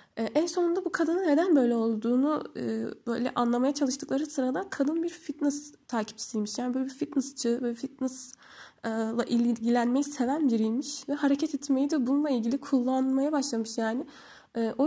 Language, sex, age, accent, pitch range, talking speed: Turkish, female, 10-29, native, 220-275 Hz, 135 wpm